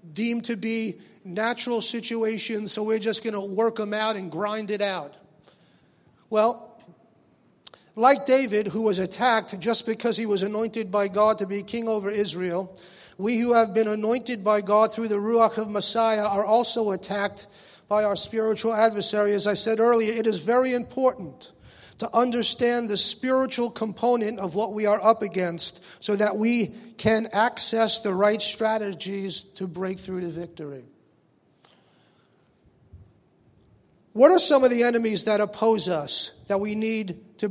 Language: English